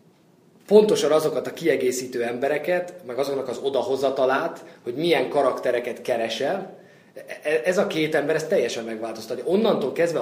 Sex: male